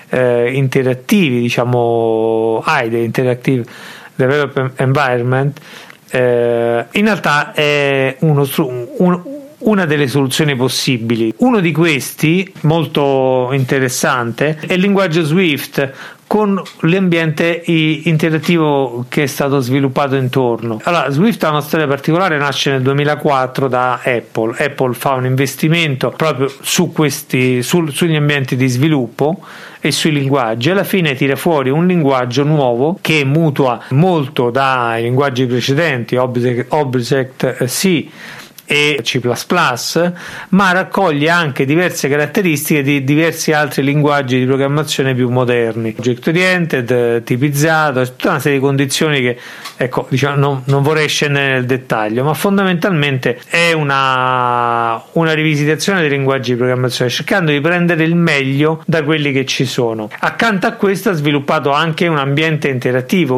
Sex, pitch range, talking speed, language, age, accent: male, 130-160 Hz, 130 wpm, Italian, 40-59, native